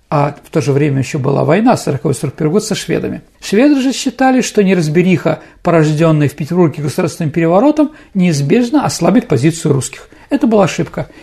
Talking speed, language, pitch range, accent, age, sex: 155 wpm, Russian, 165-235 Hz, native, 50-69, male